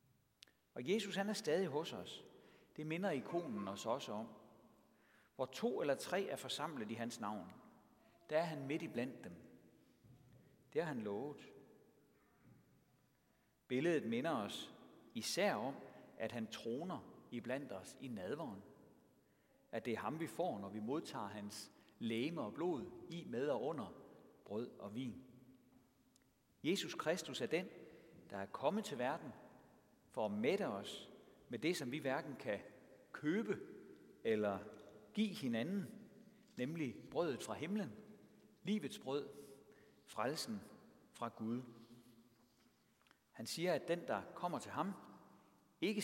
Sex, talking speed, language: male, 135 wpm, Danish